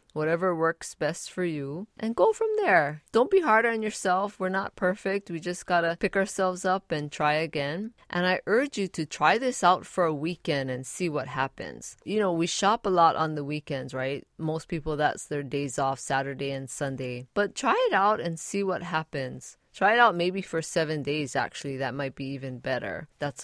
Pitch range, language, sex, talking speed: 150-195 Hz, English, female, 210 wpm